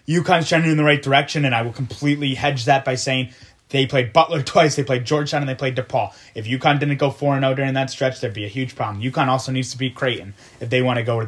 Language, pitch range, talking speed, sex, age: English, 120-140 Hz, 265 wpm, male, 20-39